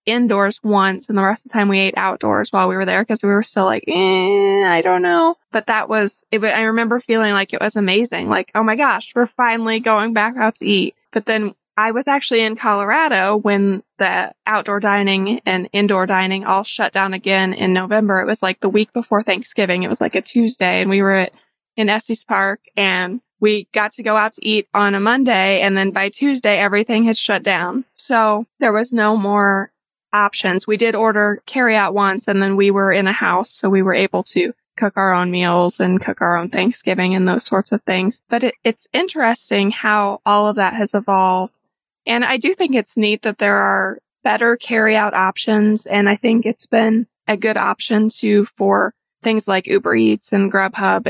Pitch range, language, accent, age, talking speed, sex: 195-225 Hz, English, American, 20-39, 210 wpm, female